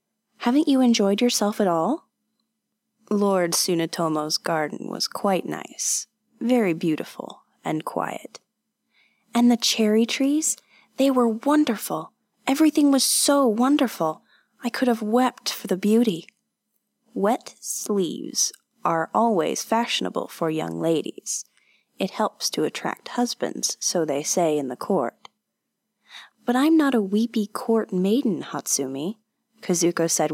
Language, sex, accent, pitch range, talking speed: English, female, American, 170-235 Hz, 125 wpm